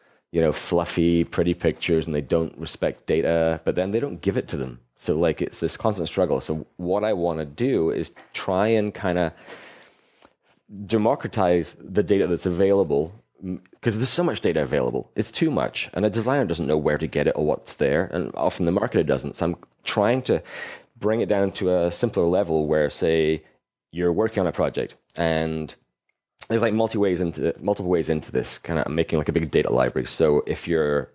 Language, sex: English, male